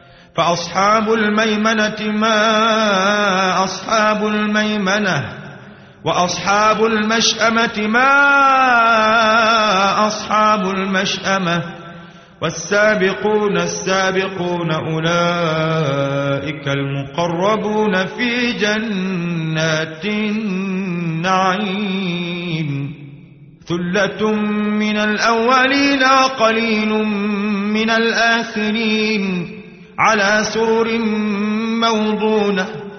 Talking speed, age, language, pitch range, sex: 45 wpm, 30-49, Arabic, 190-215 Hz, male